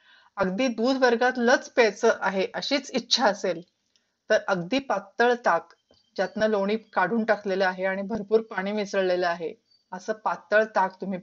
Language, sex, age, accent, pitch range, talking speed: Marathi, female, 40-59, native, 195-245 Hz, 145 wpm